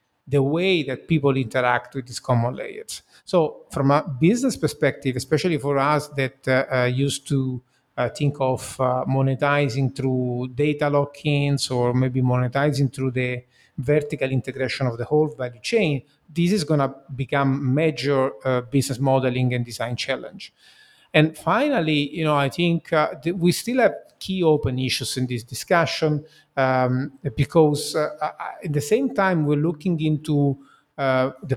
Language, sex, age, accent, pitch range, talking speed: English, male, 50-69, Italian, 130-155 Hz, 155 wpm